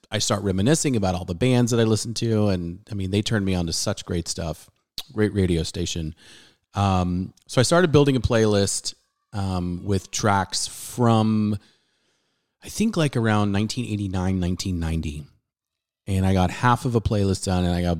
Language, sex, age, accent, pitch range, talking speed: English, male, 30-49, American, 90-110 Hz, 175 wpm